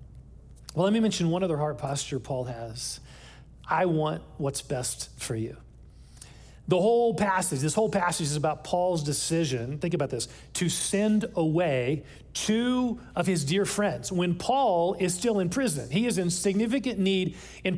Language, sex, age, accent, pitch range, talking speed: English, male, 40-59, American, 155-205 Hz, 165 wpm